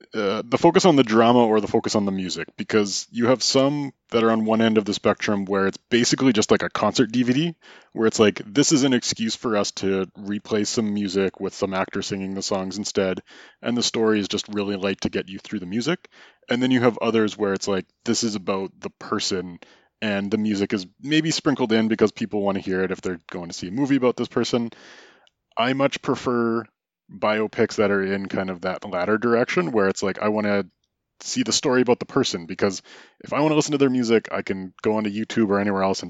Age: 20-39